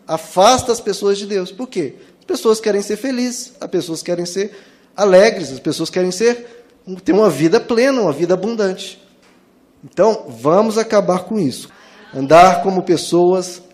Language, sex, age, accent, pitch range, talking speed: Portuguese, male, 20-39, Brazilian, 155-205 Hz, 155 wpm